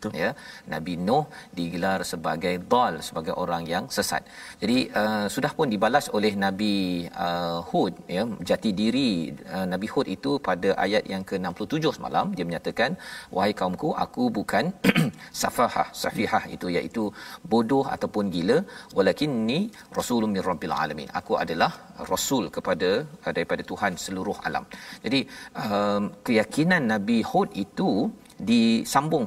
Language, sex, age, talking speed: Malayalam, male, 50-69, 130 wpm